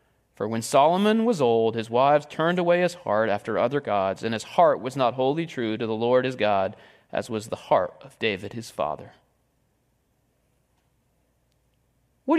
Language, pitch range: English, 120-150 Hz